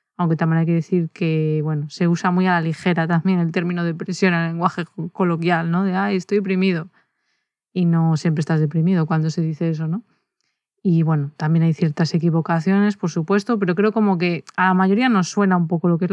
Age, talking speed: 20-39, 215 wpm